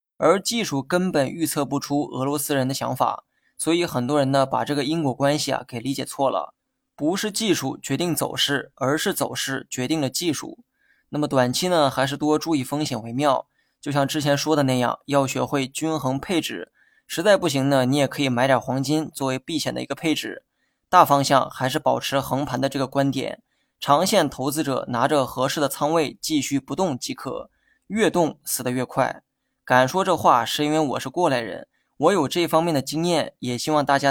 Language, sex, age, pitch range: Chinese, male, 20-39, 130-155 Hz